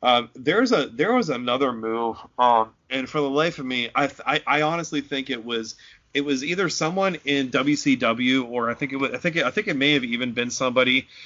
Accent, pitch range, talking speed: American, 120-145 Hz, 235 wpm